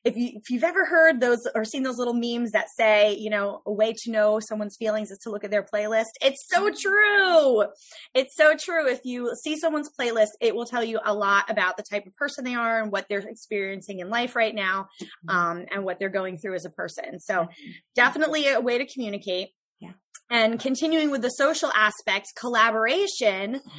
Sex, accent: female, American